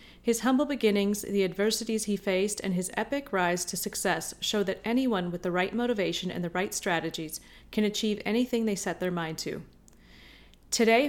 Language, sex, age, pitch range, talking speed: English, female, 30-49, 185-225 Hz, 180 wpm